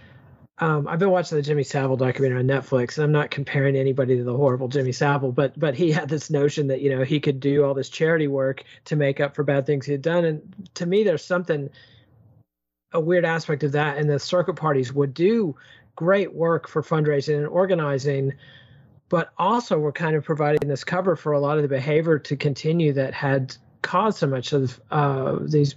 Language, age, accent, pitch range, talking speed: English, 40-59, American, 135-155 Hz, 215 wpm